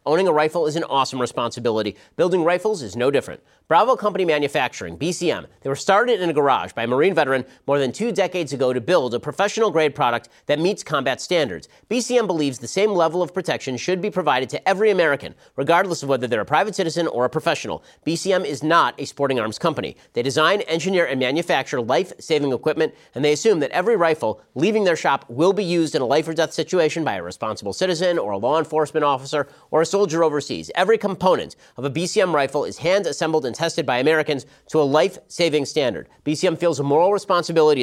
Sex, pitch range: male, 135-175 Hz